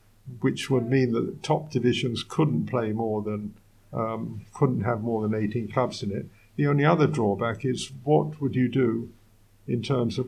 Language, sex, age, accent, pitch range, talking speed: English, male, 50-69, British, 115-145 Hz, 180 wpm